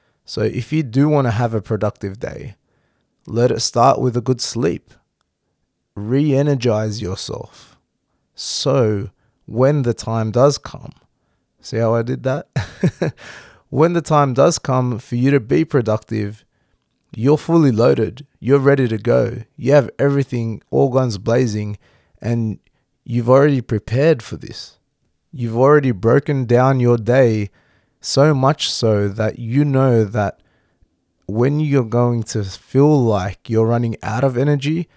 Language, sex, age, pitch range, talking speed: English, male, 20-39, 110-140 Hz, 140 wpm